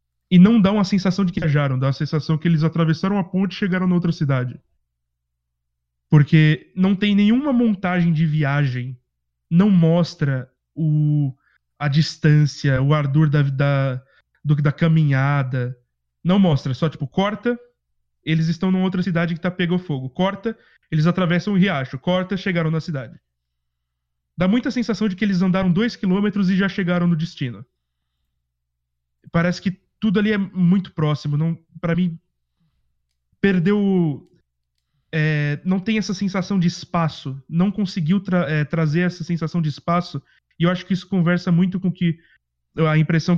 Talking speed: 160 wpm